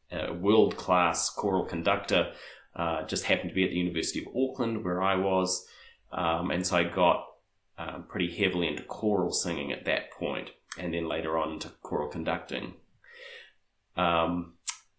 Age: 20-39